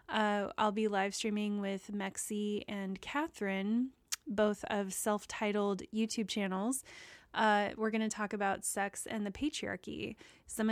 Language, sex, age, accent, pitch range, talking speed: English, female, 20-39, American, 200-220 Hz, 140 wpm